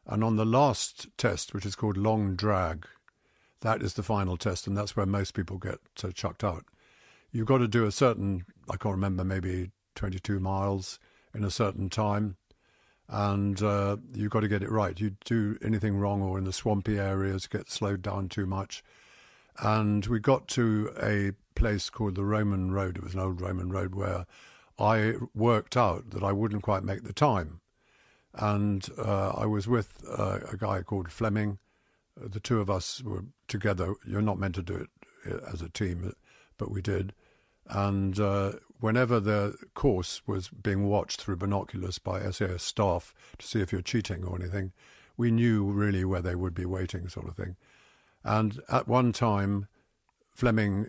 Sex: male